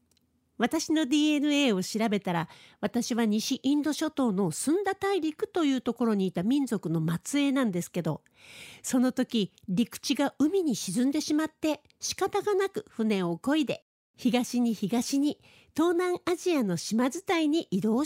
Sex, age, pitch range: female, 50-69, 215-315 Hz